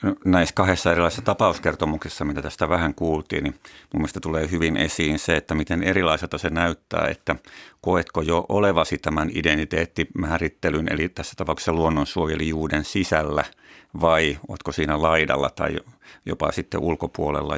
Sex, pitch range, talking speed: male, 75-85 Hz, 135 wpm